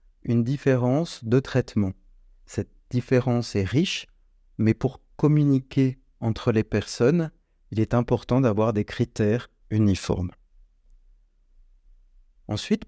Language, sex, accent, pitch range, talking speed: French, male, French, 105-135 Hz, 100 wpm